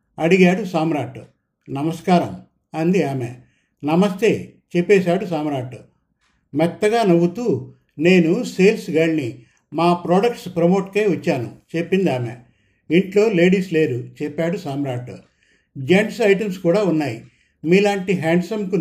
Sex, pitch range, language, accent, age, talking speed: male, 150-185 Hz, Telugu, native, 50-69, 95 wpm